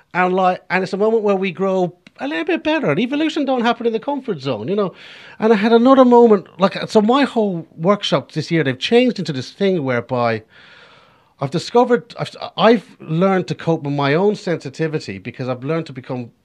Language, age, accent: English, 40-59, British